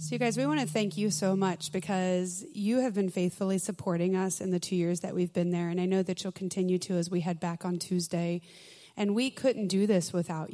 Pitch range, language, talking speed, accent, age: 180-235 Hz, English, 250 wpm, American, 20-39